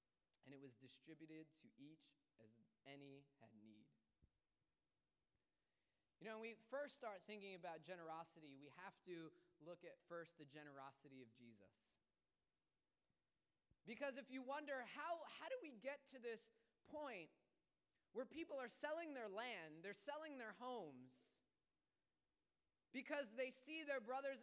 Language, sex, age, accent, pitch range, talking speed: English, male, 20-39, American, 205-265 Hz, 140 wpm